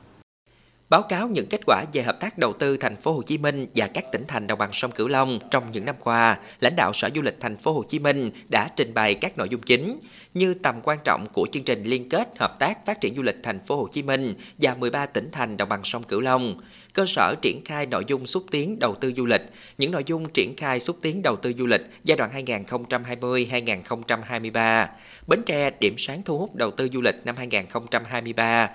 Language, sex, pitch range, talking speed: Vietnamese, male, 120-150 Hz, 235 wpm